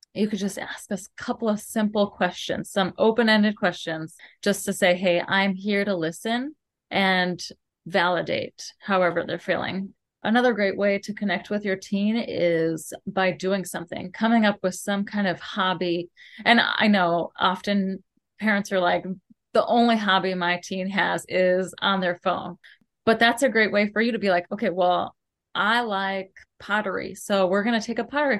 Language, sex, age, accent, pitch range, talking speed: English, female, 30-49, American, 185-220 Hz, 180 wpm